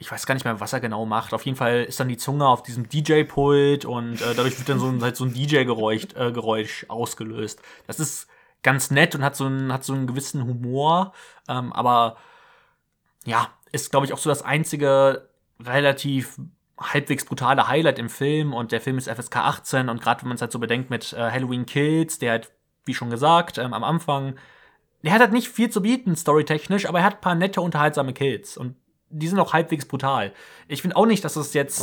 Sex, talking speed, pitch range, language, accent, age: male, 215 wpm, 125-150 Hz, German, German, 20-39